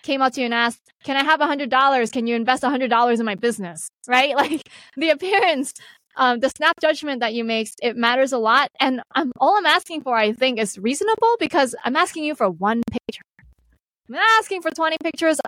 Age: 20-39